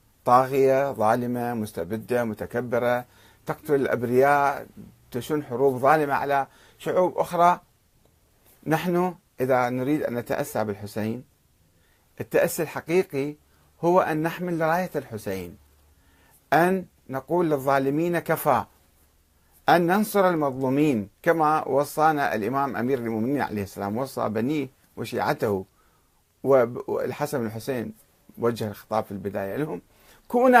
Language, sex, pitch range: Arabic, male, 115-175 Hz